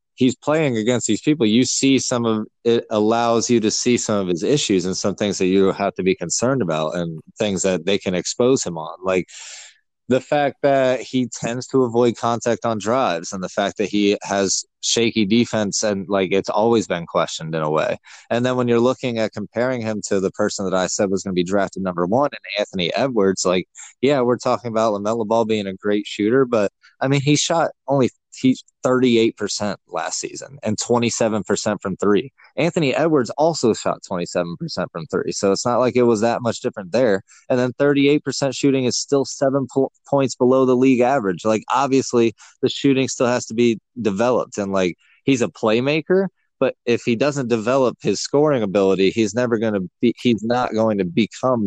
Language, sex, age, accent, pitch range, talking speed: English, male, 20-39, American, 100-125 Hz, 200 wpm